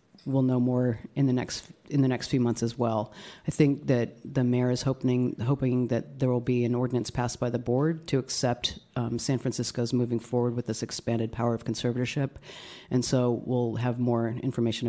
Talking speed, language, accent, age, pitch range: 200 wpm, English, American, 40-59, 120-140 Hz